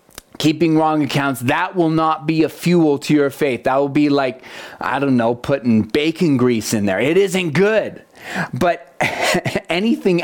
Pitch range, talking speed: 140-175 Hz, 170 wpm